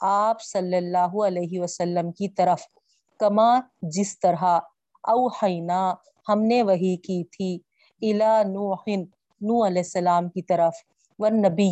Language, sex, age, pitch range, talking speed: Urdu, female, 40-59, 180-220 Hz, 115 wpm